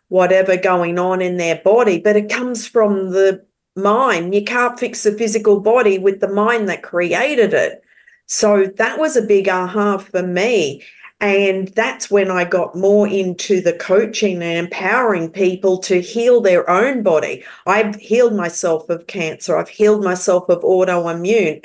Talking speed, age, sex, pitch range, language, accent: 165 wpm, 40-59, female, 180-215 Hz, English, Australian